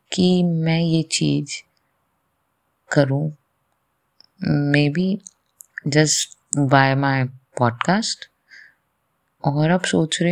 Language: English